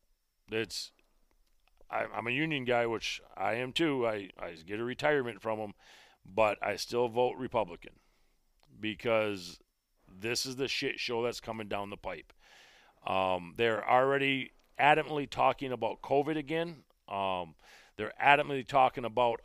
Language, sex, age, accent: English, male, 40-59, American